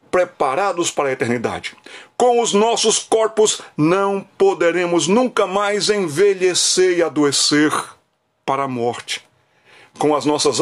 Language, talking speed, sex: Portuguese, 120 wpm, male